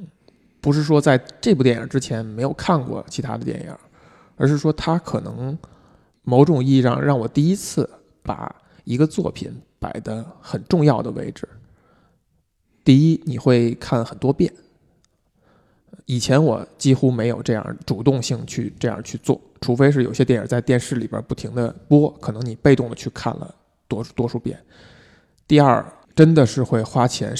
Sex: male